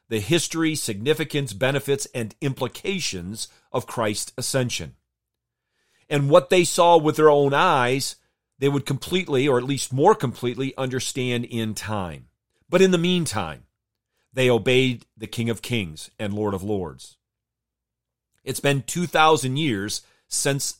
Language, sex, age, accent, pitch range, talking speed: English, male, 40-59, American, 115-150 Hz, 135 wpm